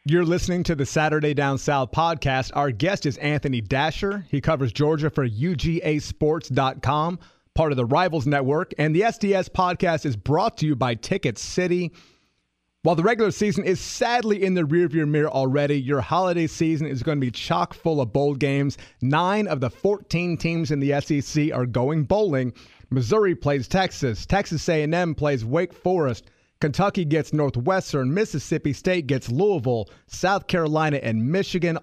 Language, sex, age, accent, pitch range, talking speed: English, male, 30-49, American, 135-170 Hz, 165 wpm